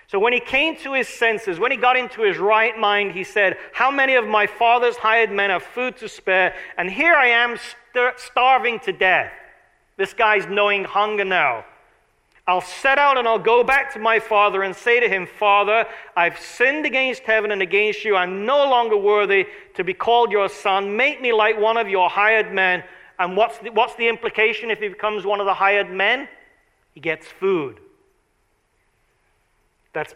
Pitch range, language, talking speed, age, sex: 195-260 Hz, English, 190 wpm, 40-59, male